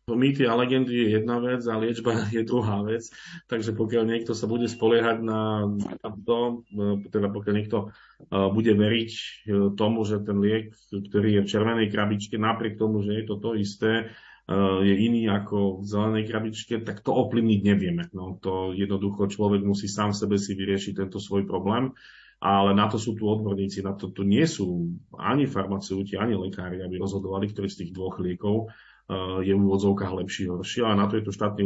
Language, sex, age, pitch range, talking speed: Slovak, male, 40-59, 100-110 Hz, 180 wpm